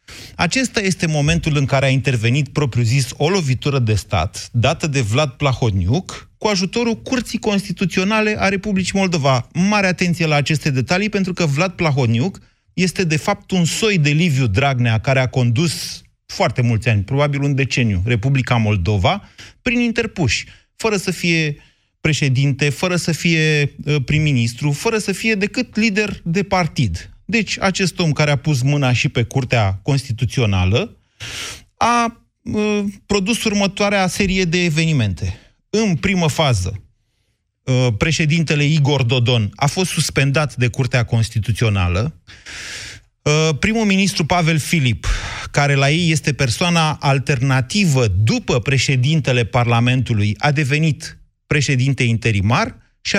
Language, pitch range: Romanian, 125-185 Hz